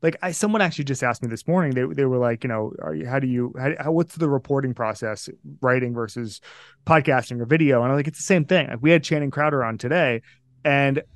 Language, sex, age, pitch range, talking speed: English, male, 30-49, 125-150 Hz, 240 wpm